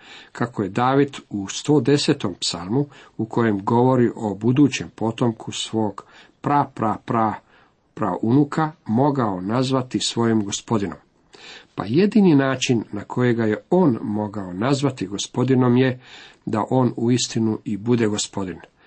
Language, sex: Croatian, male